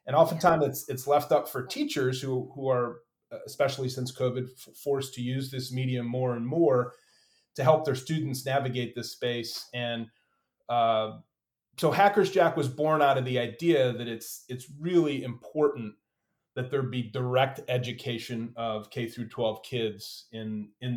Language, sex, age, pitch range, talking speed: English, male, 30-49, 115-135 Hz, 165 wpm